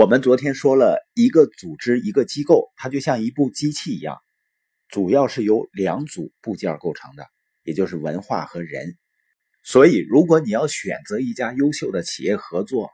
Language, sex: Chinese, male